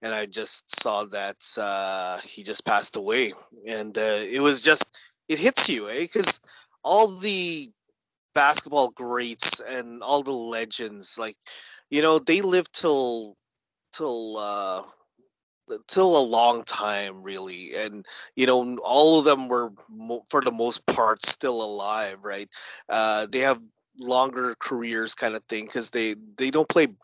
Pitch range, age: 105-155 Hz, 30-49